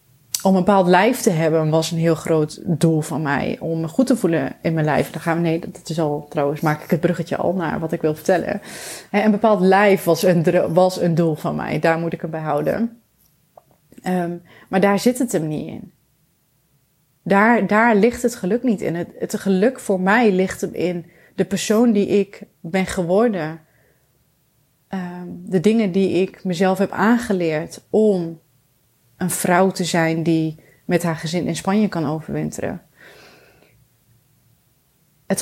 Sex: female